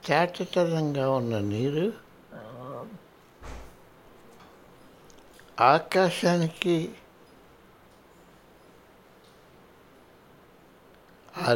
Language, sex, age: Hindi, male, 60-79